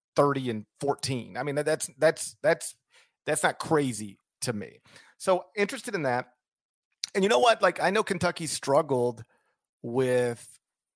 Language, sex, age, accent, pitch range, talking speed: English, male, 40-59, American, 120-155 Hz, 150 wpm